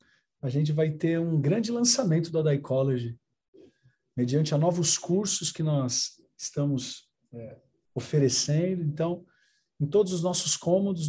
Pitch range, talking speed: 135-170 Hz, 135 wpm